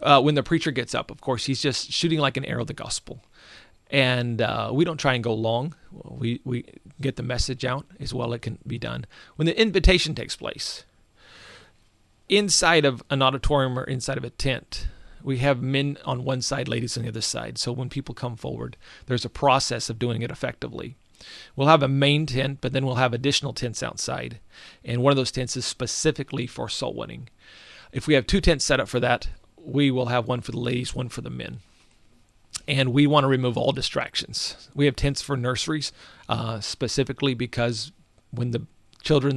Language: English